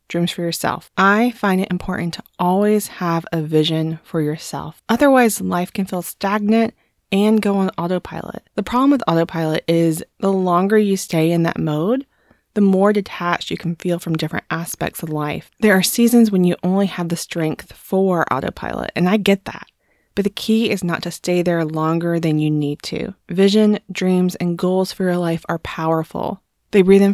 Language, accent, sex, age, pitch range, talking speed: English, American, female, 20-39, 170-210 Hz, 190 wpm